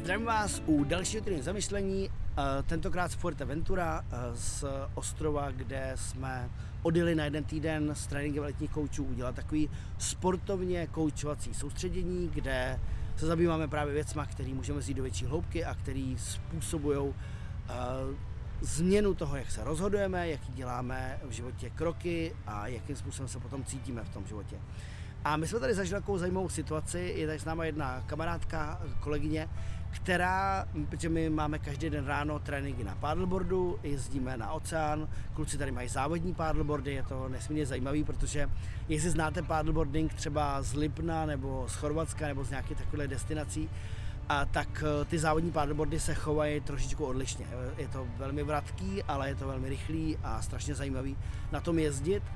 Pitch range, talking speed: 95-150 Hz, 155 wpm